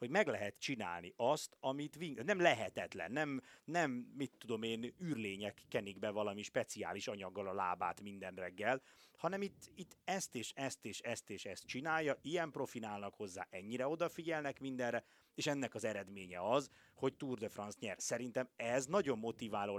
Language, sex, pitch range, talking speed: Hungarian, male, 105-140 Hz, 160 wpm